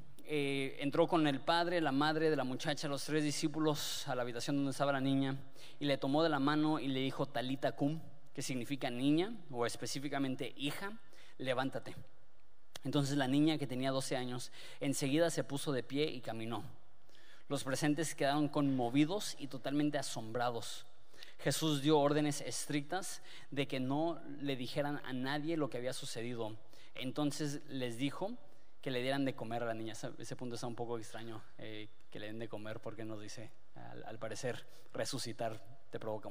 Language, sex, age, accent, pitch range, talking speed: Spanish, male, 20-39, Mexican, 115-145 Hz, 175 wpm